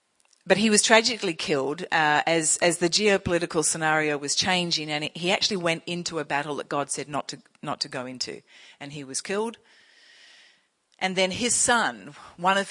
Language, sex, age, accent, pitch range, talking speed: English, female, 40-59, Australian, 140-180 Hz, 185 wpm